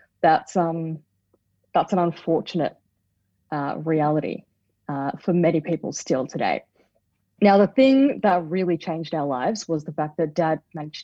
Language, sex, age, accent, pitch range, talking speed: English, female, 30-49, Australian, 150-180 Hz, 145 wpm